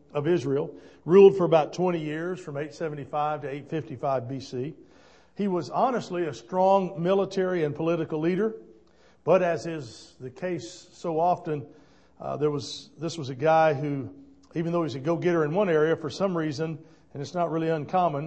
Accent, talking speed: American, 170 wpm